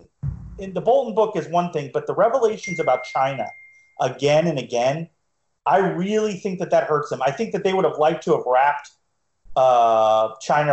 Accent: American